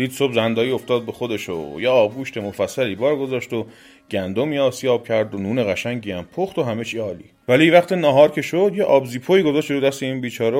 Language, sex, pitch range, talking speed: Persian, male, 110-145 Hz, 210 wpm